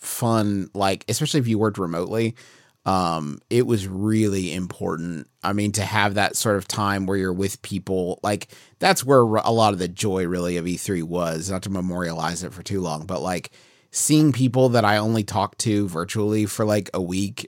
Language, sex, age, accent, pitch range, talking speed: English, male, 30-49, American, 95-115 Hz, 195 wpm